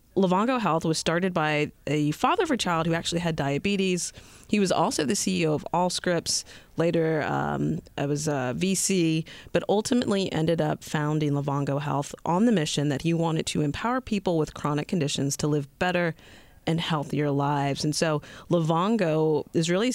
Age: 30-49